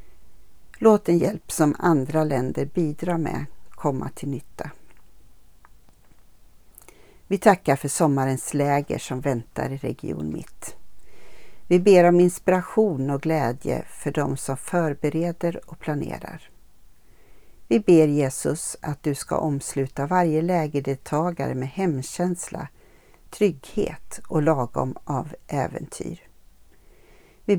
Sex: female